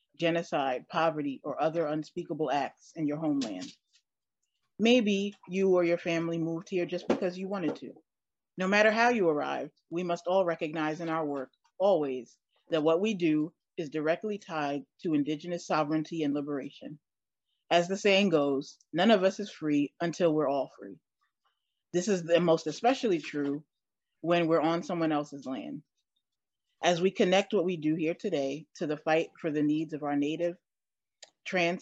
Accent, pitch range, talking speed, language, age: American, 150-175 Hz, 170 wpm, English, 30-49